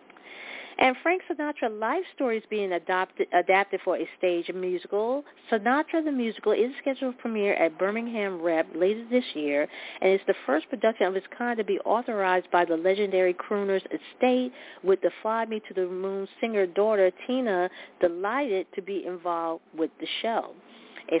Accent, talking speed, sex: American, 165 wpm, female